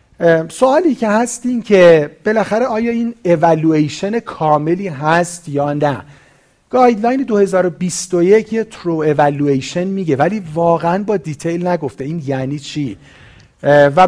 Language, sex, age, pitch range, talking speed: Persian, male, 40-59, 145-190 Hz, 120 wpm